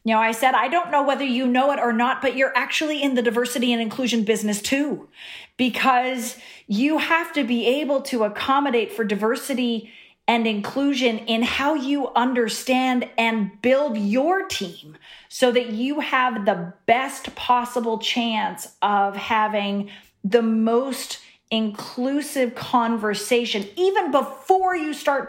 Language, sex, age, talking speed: English, female, 40-59, 140 wpm